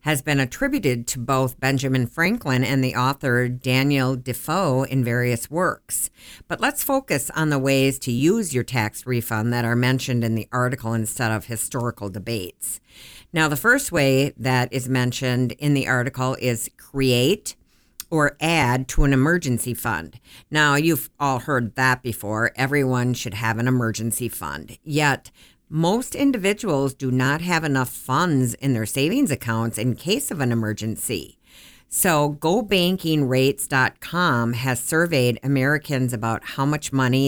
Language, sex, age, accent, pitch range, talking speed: English, female, 50-69, American, 120-150 Hz, 150 wpm